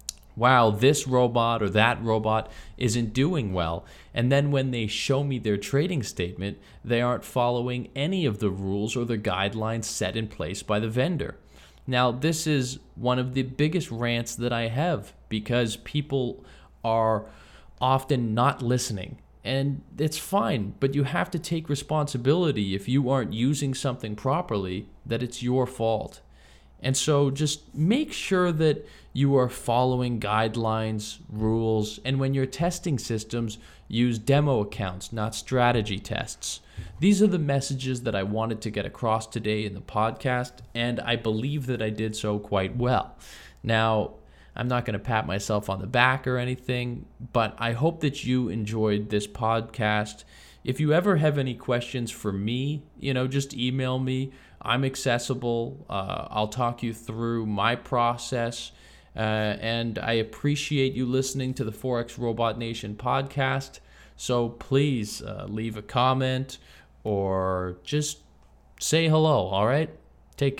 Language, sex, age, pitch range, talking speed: English, male, 20-39, 105-135 Hz, 155 wpm